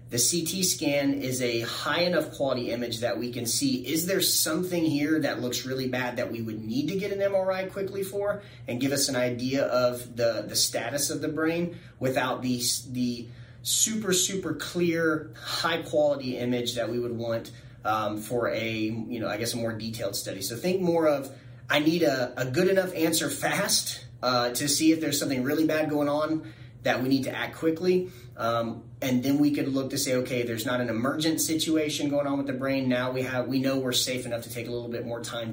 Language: English